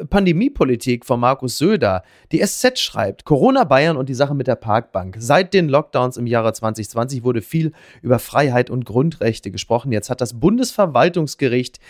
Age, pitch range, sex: 30-49, 120-165 Hz, male